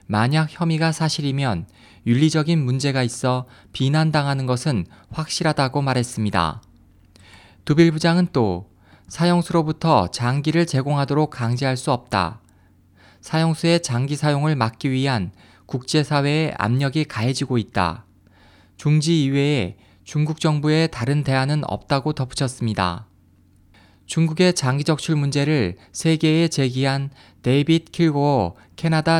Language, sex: Korean, male